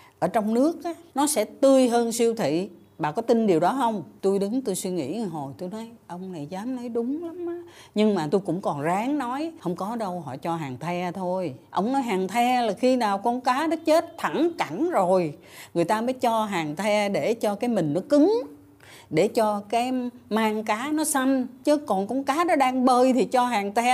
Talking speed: 220 wpm